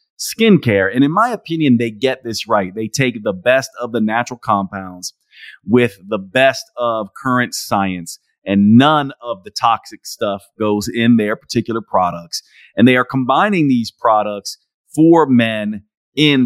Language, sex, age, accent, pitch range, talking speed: English, male, 30-49, American, 105-130 Hz, 155 wpm